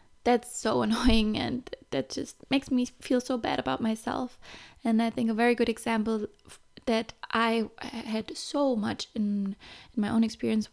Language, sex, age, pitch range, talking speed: English, female, 20-39, 230-255 Hz, 170 wpm